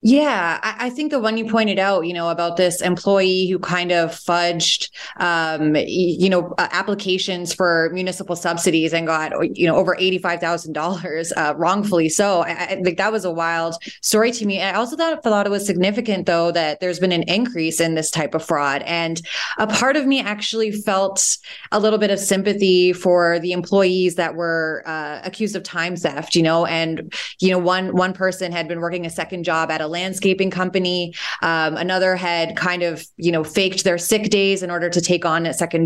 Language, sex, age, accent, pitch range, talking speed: English, female, 20-39, American, 170-195 Hz, 200 wpm